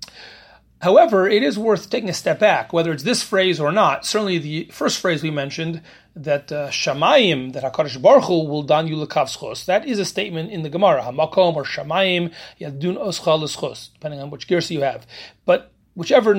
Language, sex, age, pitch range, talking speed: English, male, 30-49, 165-215 Hz, 180 wpm